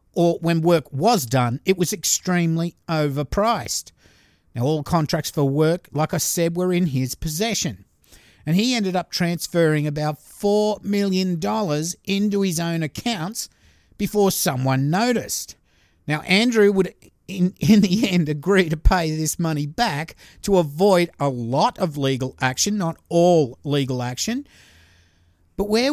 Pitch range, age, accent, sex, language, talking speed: 145-200 Hz, 50-69, Australian, male, English, 145 wpm